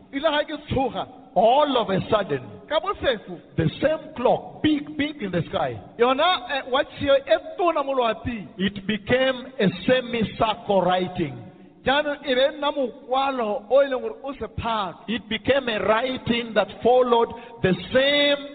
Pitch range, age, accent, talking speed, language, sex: 205-270 Hz, 50-69, South African, 80 wpm, English, male